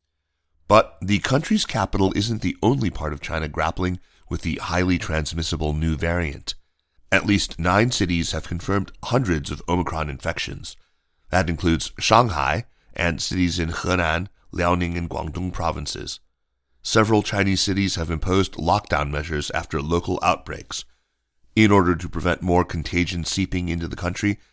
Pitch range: 80-95 Hz